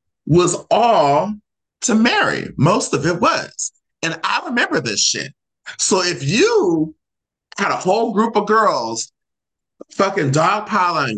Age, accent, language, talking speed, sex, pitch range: 30-49, American, English, 130 wpm, male, 135-195 Hz